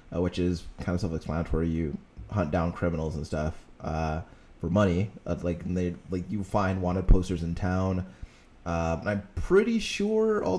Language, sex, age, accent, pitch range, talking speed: English, male, 20-39, American, 85-105 Hz, 180 wpm